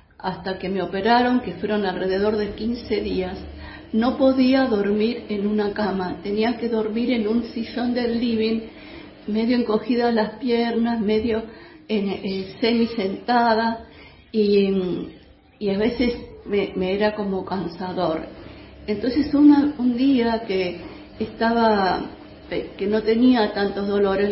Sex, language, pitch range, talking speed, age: female, Spanish, 200-245 Hz, 120 wpm, 50-69